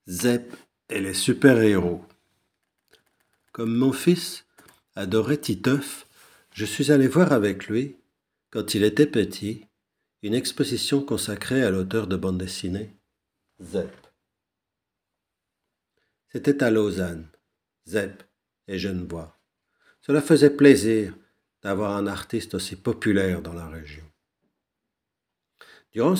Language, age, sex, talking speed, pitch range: French, 50-69, male, 105 wpm, 95-130 Hz